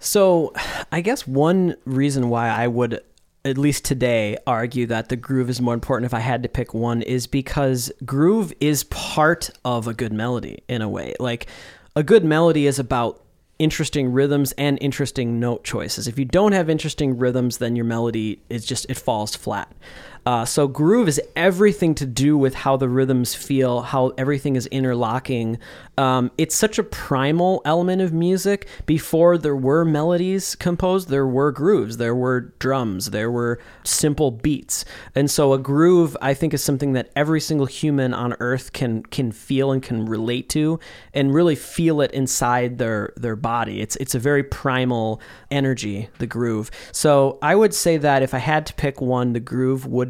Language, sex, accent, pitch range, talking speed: English, male, American, 120-150 Hz, 180 wpm